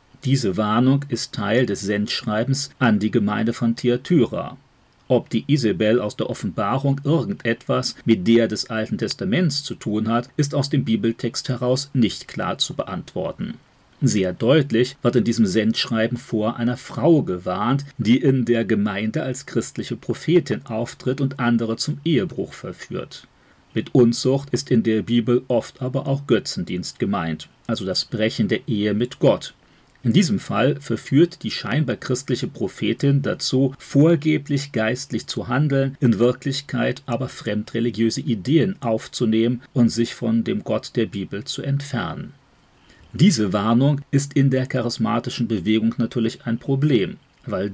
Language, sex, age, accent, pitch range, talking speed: German, male, 40-59, German, 115-135 Hz, 145 wpm